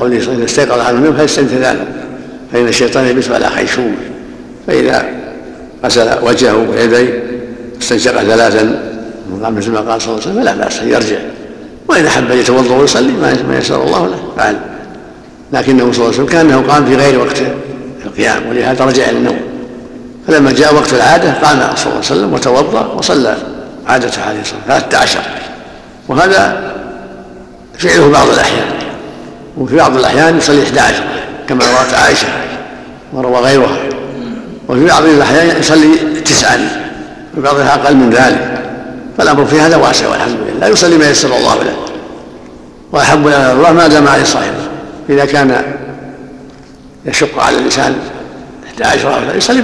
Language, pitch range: Arabic, 115-140 Hz